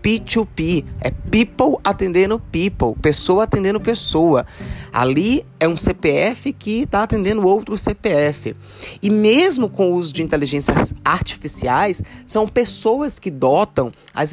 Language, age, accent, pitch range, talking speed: Portuguese, 20-39, Brazilian, 145-205 Hz, 125 wpm